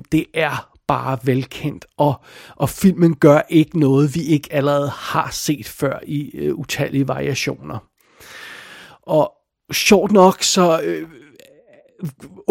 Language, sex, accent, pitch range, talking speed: Danish, male, native, 150-185 Hz, 120 wpm